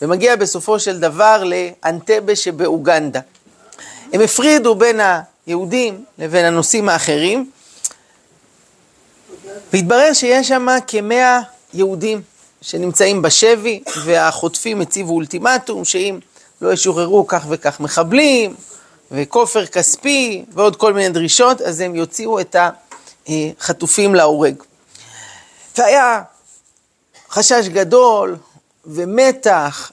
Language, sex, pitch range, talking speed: Hebrew, male, 170-230 Hz, 90 wpm